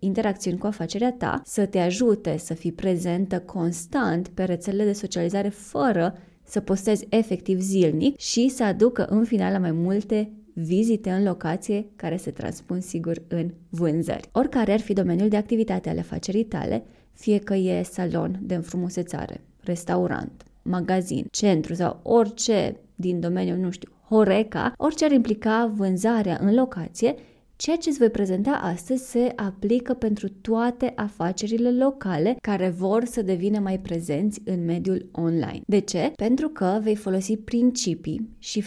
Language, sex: Romanian, female